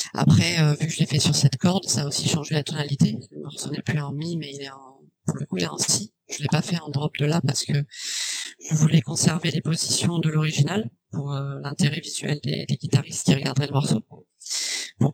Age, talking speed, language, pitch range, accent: 40-59, 245 wpm, French, 140-165 Hz, French